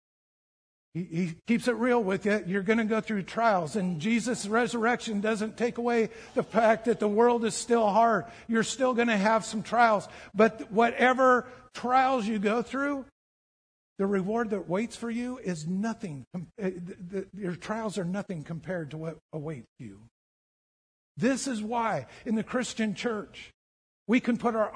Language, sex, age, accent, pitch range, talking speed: English, male, 50-69, American, 175-230 Hz, 160 wpm